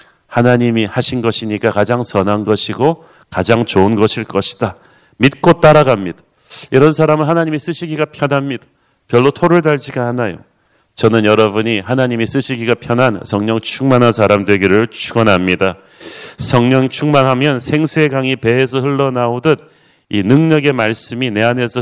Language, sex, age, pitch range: Korean, male, 40-59, 115-135 Hz